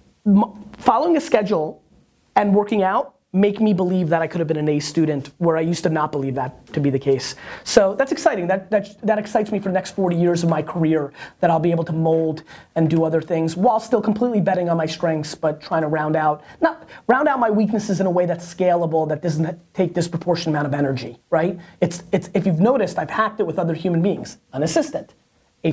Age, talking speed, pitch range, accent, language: 30-49, 230 wpm, 160-215 Hz, American, English